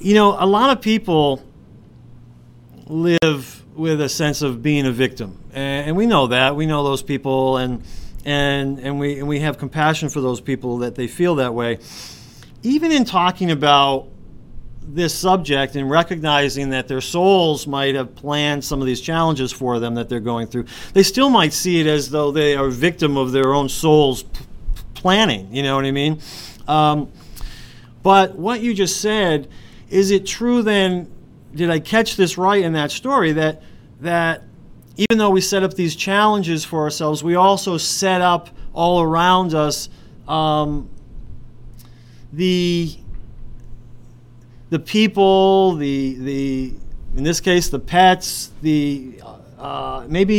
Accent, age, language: American, 40-59, English